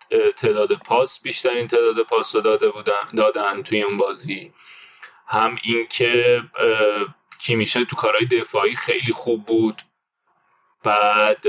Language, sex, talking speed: Persian, male, 110 wpm